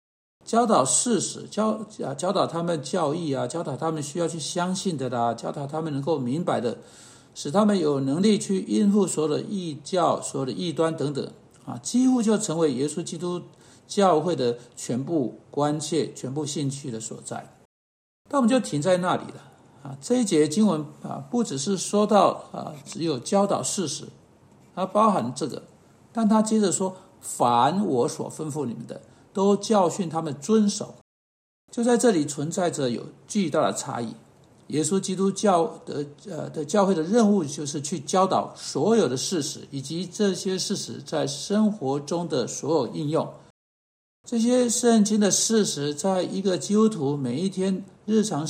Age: 60-79